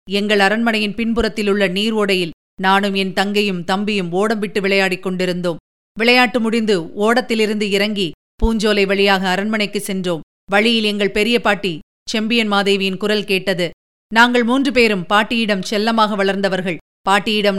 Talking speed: 125 wpm